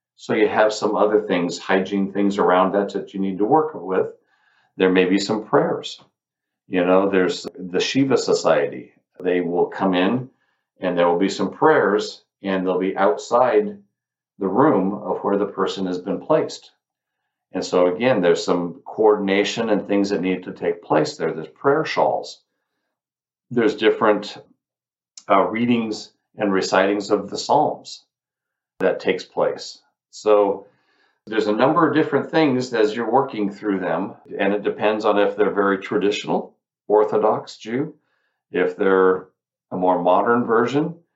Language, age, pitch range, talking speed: English, 50-69, 95-120 Hz, 155 wpm